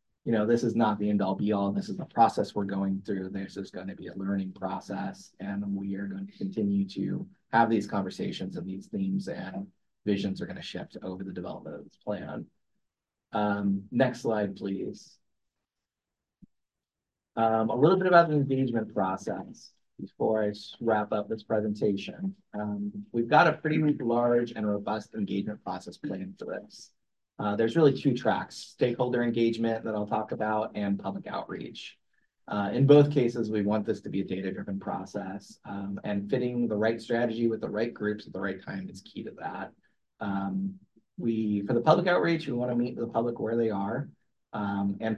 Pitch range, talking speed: 100-120 Hz, 185 wpm